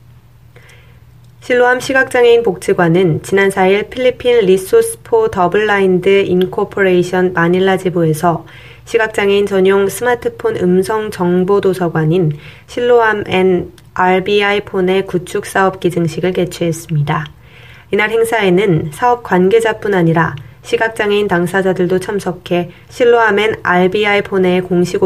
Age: 20-39